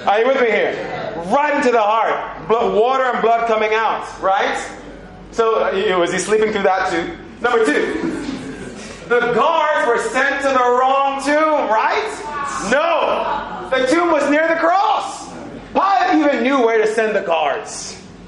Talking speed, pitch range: 160 wpm, 195-285 Hz